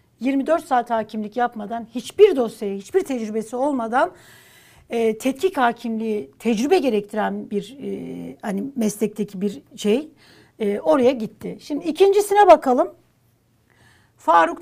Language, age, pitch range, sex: Turkish, 60-79, 230-305 Hz, female